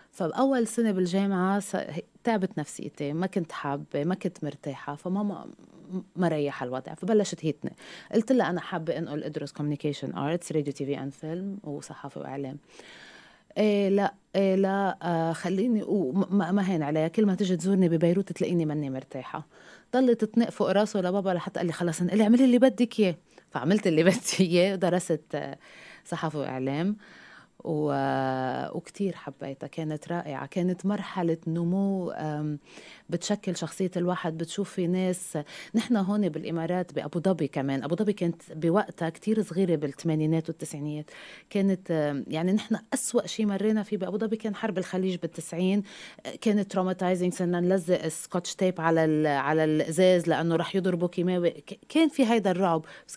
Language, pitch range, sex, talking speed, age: Arabic, 155-200 Hz, female, 150 wpm, 20-39